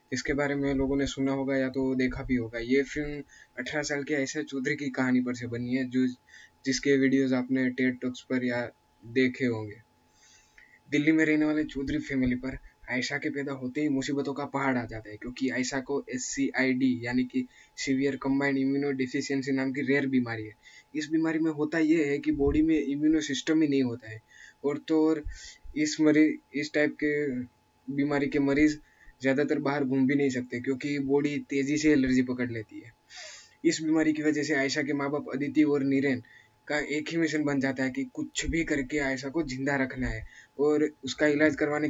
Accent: native